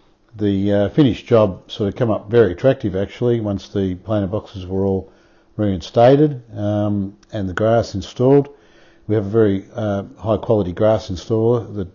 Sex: male